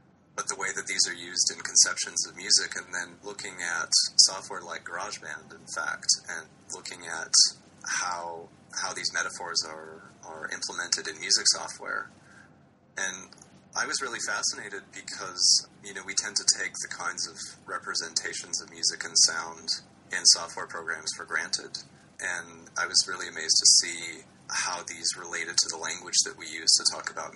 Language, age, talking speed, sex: English, 30-49, 170 wpm, male